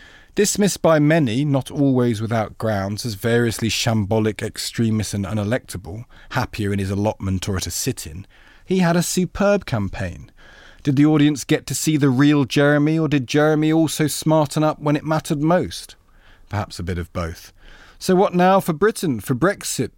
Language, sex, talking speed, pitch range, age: English, male, 170 wpm, 115-160 Hz, 40-59